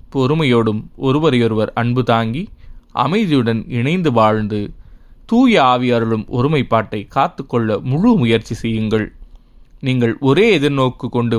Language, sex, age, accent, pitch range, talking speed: Tamil, male, 20-39, native, 110-140 Hz, 105 wpm